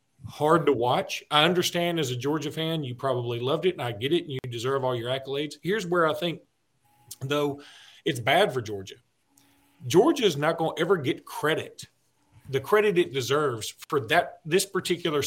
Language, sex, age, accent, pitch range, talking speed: English, male, 40-59, American, 125-175 Hz, 190 wpm